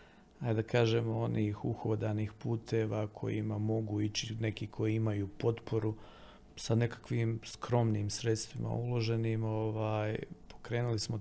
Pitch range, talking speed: 110-140 Hz, 110 wpm